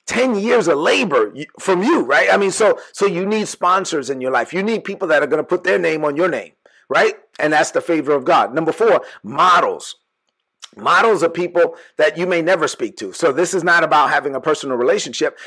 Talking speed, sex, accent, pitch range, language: 225 wpm, male, American, 150-195 Hz, English